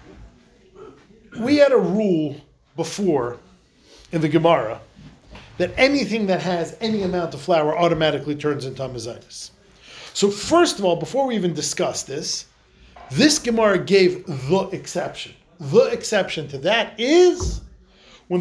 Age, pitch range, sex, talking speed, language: 40-59, 165-225 Hz, male, 130 wpm, English